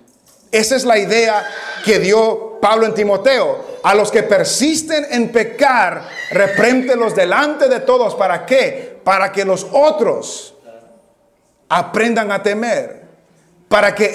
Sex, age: male, 40-59